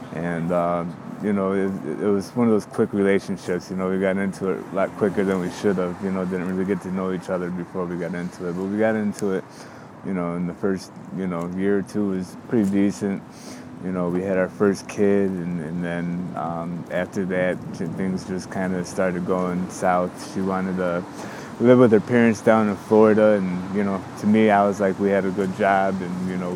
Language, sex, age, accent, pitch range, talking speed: English, male, 20-39, American, 90-100 Hz, 235 wpm